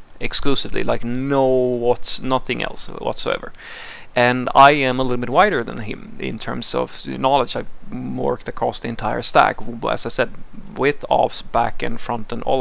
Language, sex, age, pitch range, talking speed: English, male, 30-49, 110-125 Hz, 175 wpm